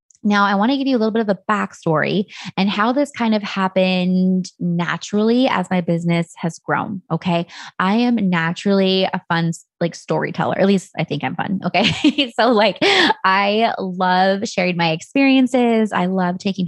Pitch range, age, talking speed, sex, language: 180-225 Hz, 20-39, 175 wpm, female, English